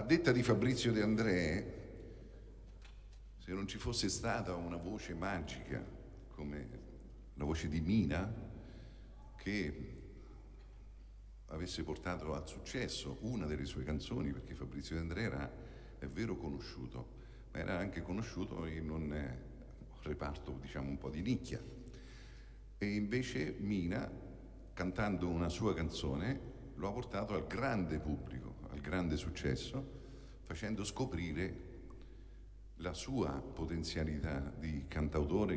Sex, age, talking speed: male, 50-69, 120 wpm